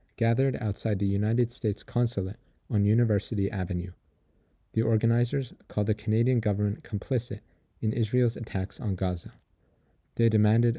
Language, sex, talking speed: English, male, 130 wpm